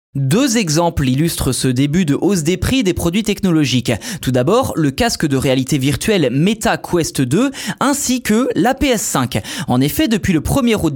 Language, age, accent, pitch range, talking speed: French, 20-39, French, 145-215 Hz, 175 wpm